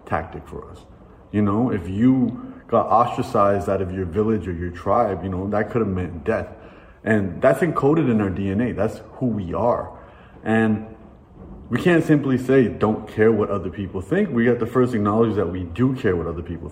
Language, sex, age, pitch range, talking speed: English, male, 30-49, 95-125 Hz, 200 wpm